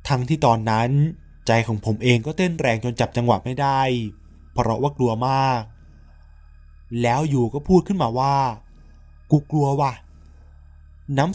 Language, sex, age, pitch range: Thai, male, 20-39, 110-140 Hz